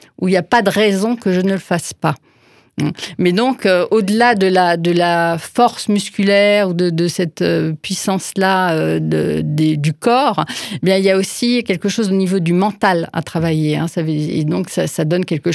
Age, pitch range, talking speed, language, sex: 40-59, 170-205 Hz, 215 wpm, French, female